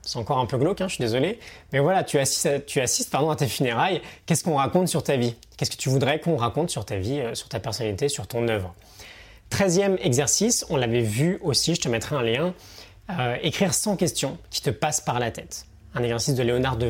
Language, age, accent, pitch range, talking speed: French, 20-39, French, 115-150 Hz, 240 wpm